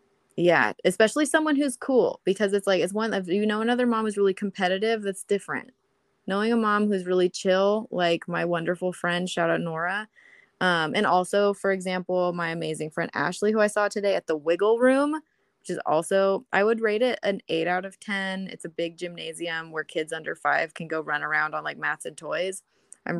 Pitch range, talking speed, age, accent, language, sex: 170-200 Hz, 205 wpm, 20-39, American, English, female